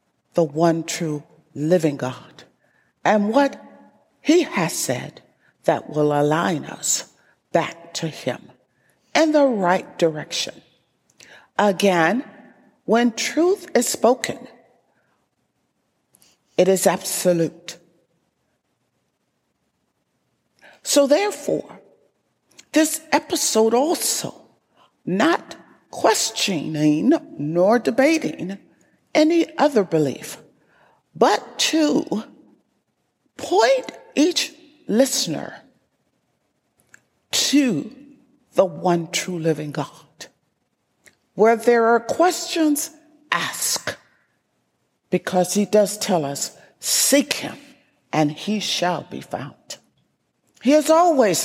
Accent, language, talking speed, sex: American, English, 85 wpm, female